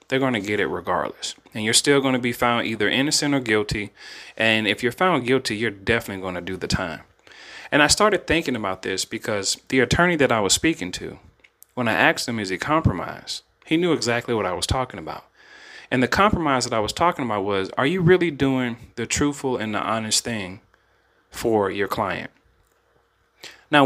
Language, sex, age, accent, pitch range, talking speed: English, male, 30-49, American, 105-140 Hz, 205 wpm